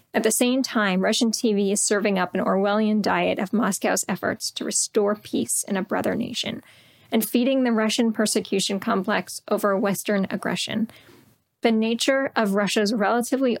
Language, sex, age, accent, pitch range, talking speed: English, female, 10-29, American, 205-245 Hz, 160 wpm